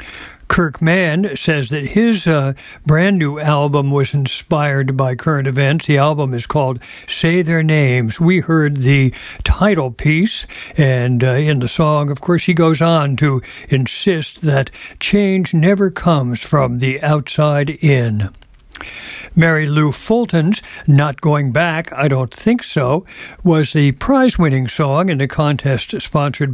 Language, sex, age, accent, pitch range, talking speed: English, male, 60-79, American, 135-170 Hz, 145 wpm